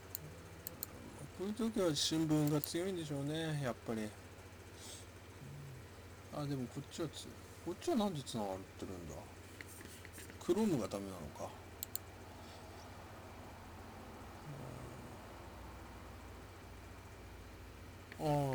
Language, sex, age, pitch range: Japanese, male, 50-69, 90-120 Hz